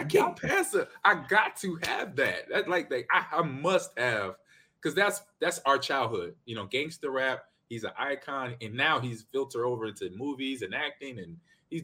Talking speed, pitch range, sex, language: 205 wpm, 110-160 Hz, male, English